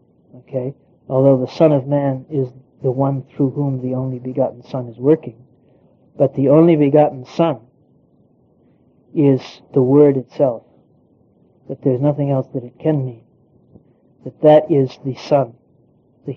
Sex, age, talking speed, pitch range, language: male, 60-79, 145 wpm, 130-145 Hz, English